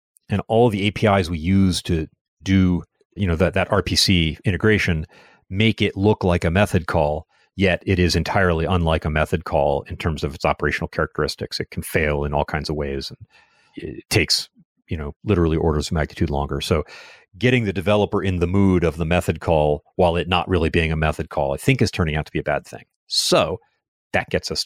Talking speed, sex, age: 210 wpm, male, 40-59